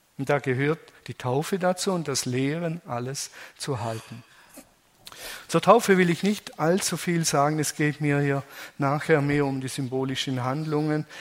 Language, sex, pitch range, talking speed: German, male, 145-185 Hz, 160 wpm